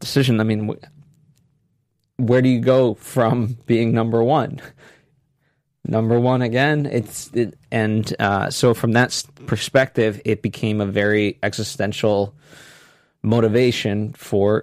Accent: American